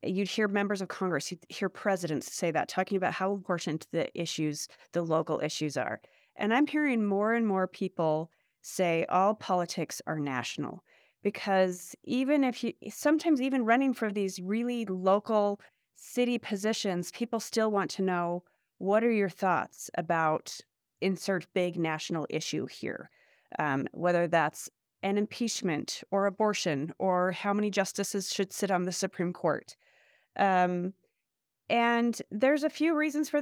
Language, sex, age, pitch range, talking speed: English, female, 30-49, 175-225 Hz, 150 wpm